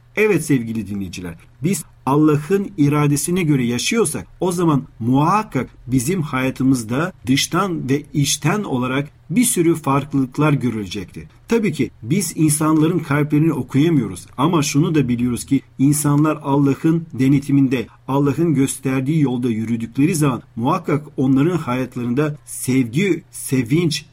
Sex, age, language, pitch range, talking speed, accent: male, 40-59, Turkish, 125-155 Hz, 110 wpm, native